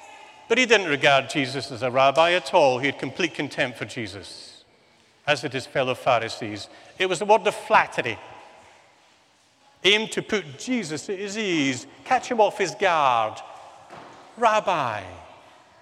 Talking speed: 150 wpm